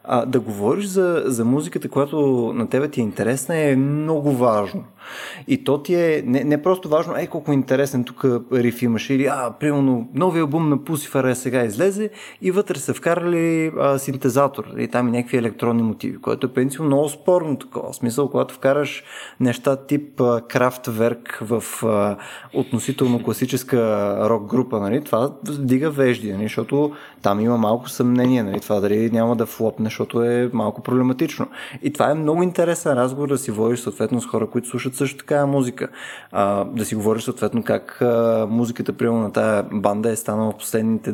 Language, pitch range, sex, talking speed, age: Bulgarian, 120-150 Hz, male, 175 wpm, 20-39